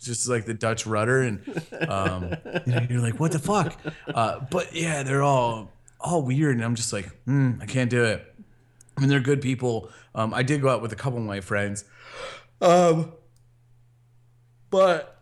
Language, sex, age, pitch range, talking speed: English, male, 30-49, 105-130 Hz, 190 wpm